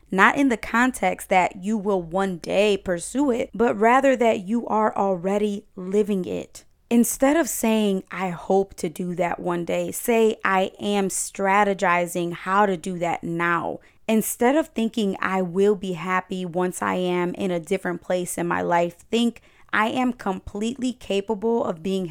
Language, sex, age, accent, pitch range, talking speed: English, female, 20-39, American, 185-220 Hz, 170 wpm